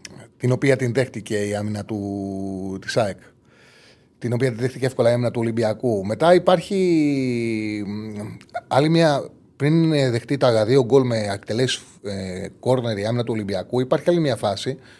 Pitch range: 110-145 Hz